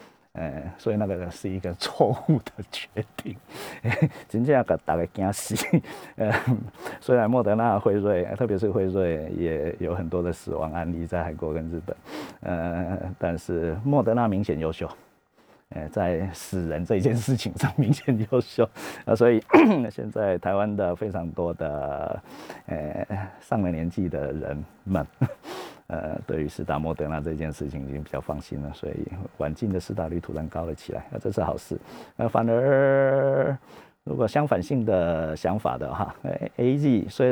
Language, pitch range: Chinese, 85-115 Hz